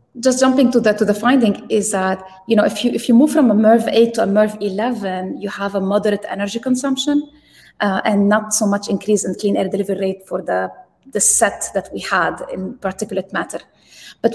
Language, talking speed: English, 210 wpm